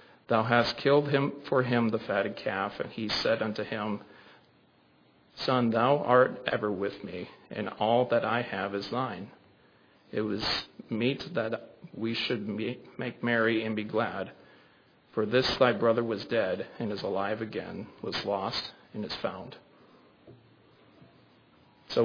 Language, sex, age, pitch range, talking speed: English, male, 40-59, 110-125 Hz, 145 wpm